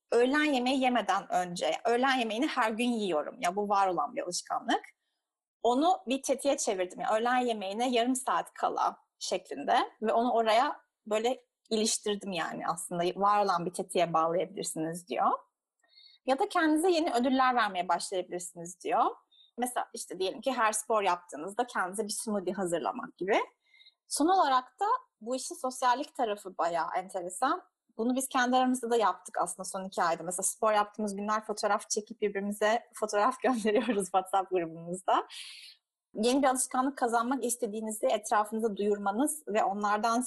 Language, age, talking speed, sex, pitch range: Turkish, 30-49, 150 wpm, female, 190-255 Hz